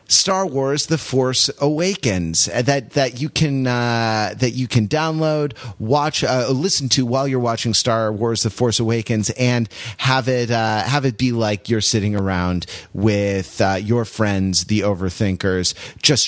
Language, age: English, 30-49